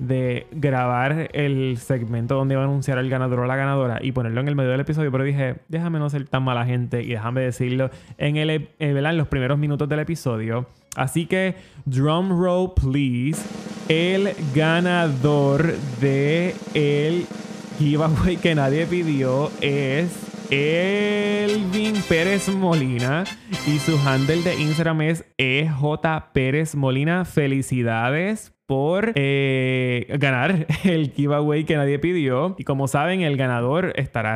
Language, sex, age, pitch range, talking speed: Spanish, male, 20-39, 130-160 Hz, 140 wpm